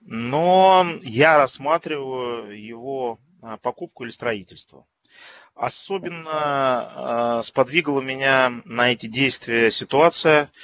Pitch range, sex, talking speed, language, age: 110-140 Hz, male, 85 wpm, Russian, 30-49